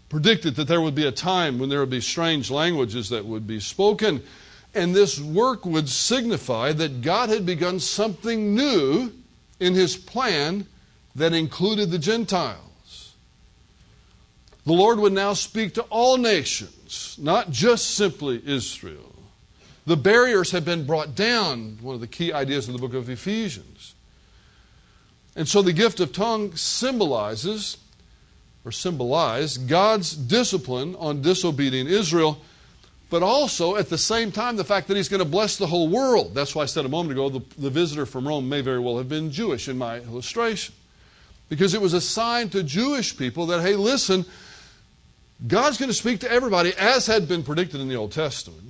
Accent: American